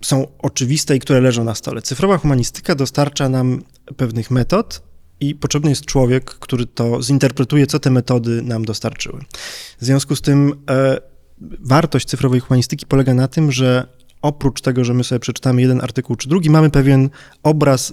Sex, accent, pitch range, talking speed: male, native, 120-145 Hz, 165 wpm